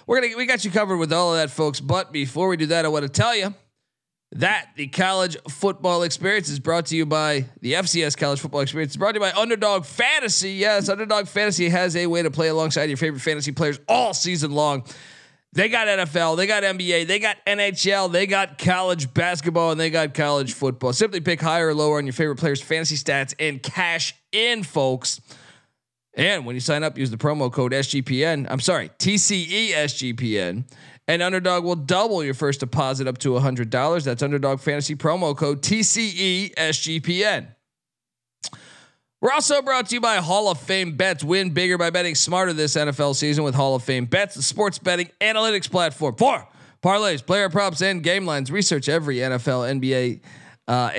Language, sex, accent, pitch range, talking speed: English, male, American, 140-185 Hz, 195 wpm